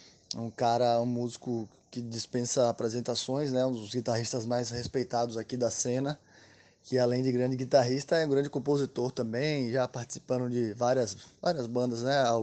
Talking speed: 165 wpm